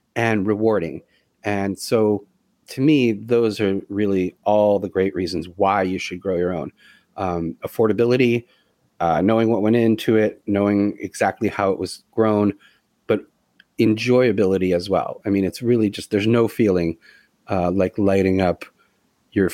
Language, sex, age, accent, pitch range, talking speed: English, male, 30-49, American, 95-110 Hz, 155 wpm